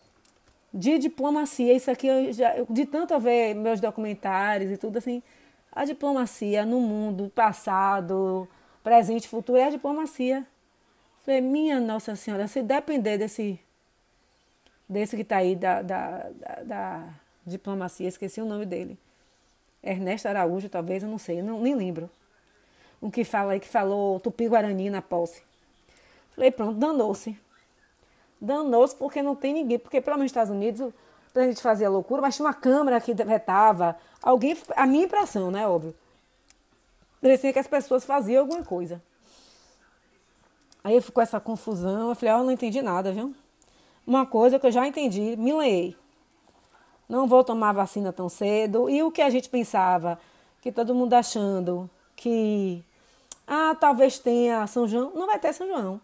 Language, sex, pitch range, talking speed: Portuguese, female, 200-265 Hz, 160 wpm